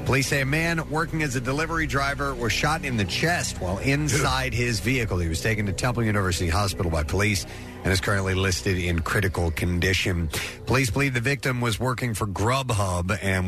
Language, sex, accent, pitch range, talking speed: English, male, American, 95-130 Hz, 190 wpm